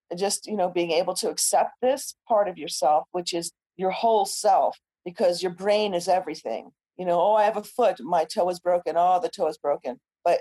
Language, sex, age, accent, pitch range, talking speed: English, female, 40-59, American, 170-205 Hz, 220 wpm